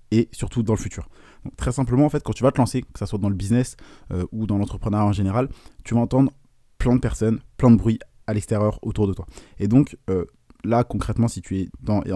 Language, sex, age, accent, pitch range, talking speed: French, male, 20-39, French, 100-120 Hz, 245 wpm